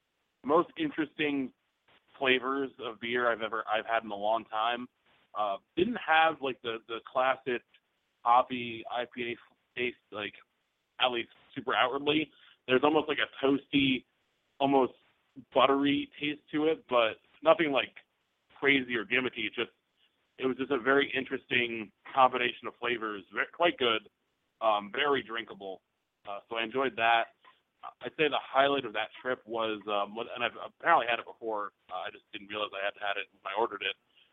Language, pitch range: English, 110-135 Hz